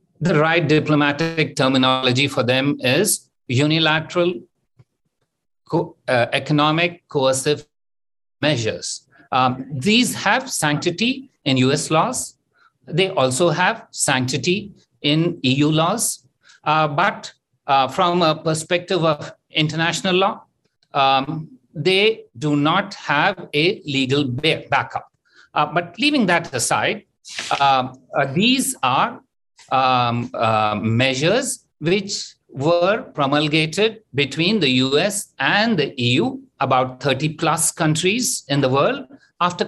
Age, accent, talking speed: 60-79, Indian, 110 wpm